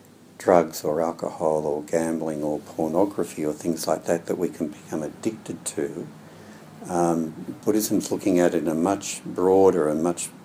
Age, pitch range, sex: 60-79, 80-85 Hz, male